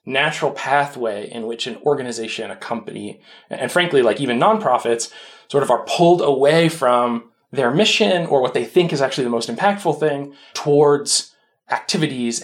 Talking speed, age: 160 wpm, 20-39